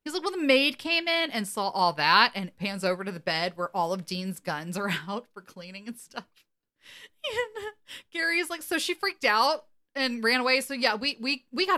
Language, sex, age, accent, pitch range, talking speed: English, female, 30-49, American, 175-275 Hz, 215 wpm